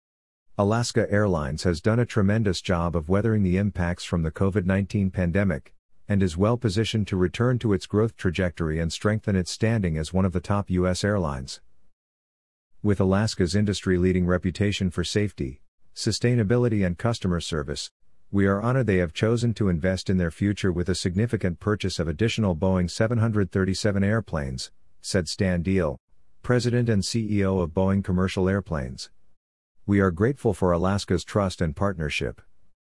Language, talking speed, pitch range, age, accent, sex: English, 155 wpm, 85-105 Hz, 50-69, American, male